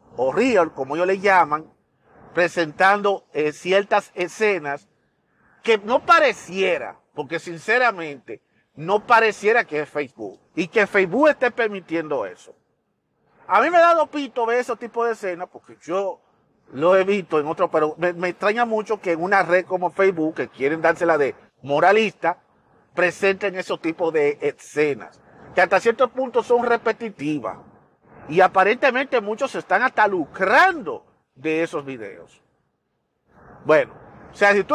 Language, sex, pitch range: Spanish, male, 170-235 Hz